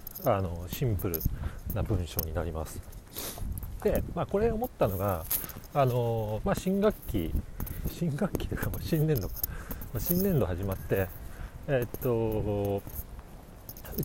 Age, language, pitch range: 40-59, Japanese, 95-125 Hz